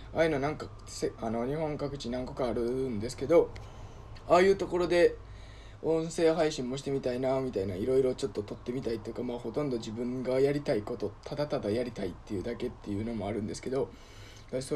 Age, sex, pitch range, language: 20-39, male, 105-135 Hz, Japanese